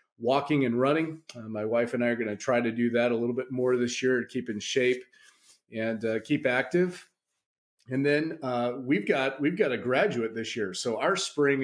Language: English